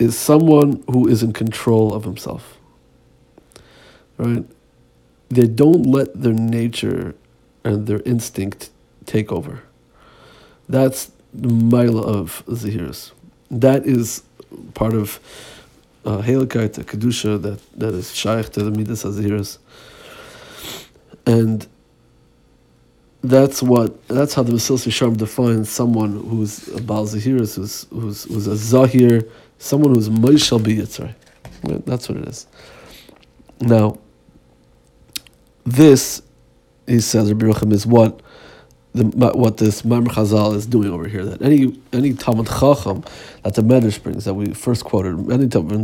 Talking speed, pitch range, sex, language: 130 wpm, 105-125 Hz, male, Hebrew